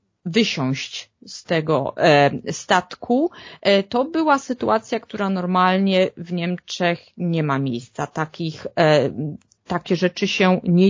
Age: 30-49